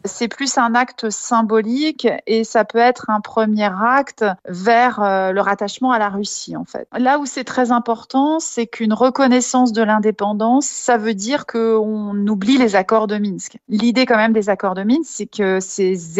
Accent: French